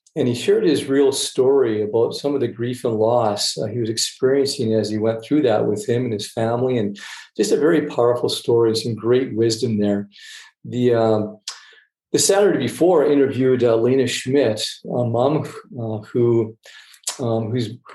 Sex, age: male, 50-69